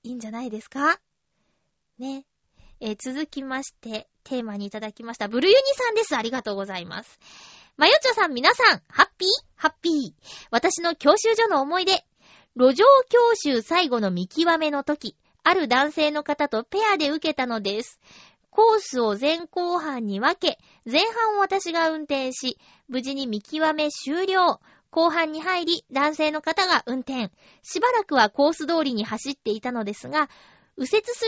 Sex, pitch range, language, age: female, 255-355 Hz, Japanese, 20-39